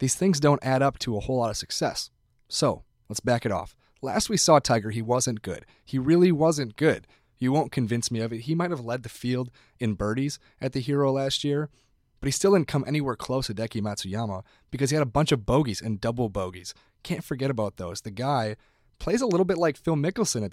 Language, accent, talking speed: English, American, 235 wpm